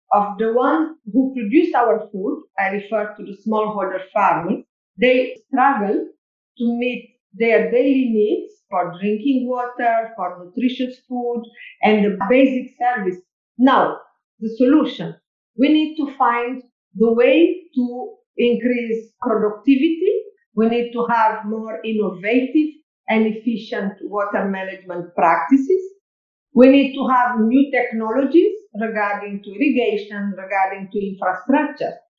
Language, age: English, 50-69